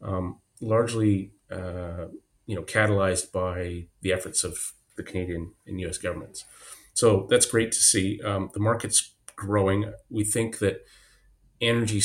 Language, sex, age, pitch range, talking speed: English, male, 30-49, 95-110 Hz, 140 wpm